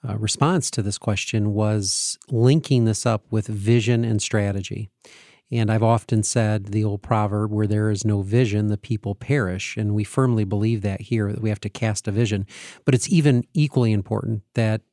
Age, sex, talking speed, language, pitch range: 40-59, male, 190 wpm, English, 105-130 Hz